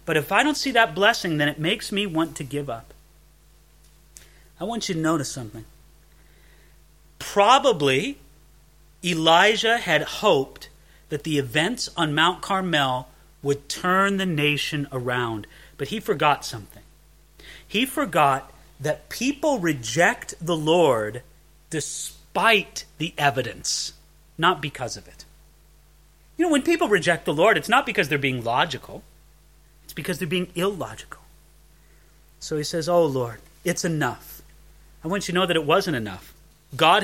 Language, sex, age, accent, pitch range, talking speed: English, male, 40-59, American, 150-210 Hz, 145 wpm